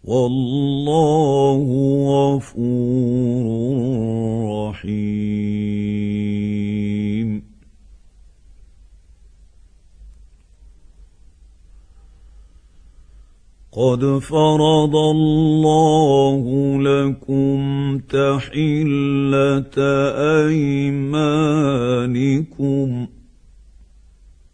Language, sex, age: Arabic, male, 50-69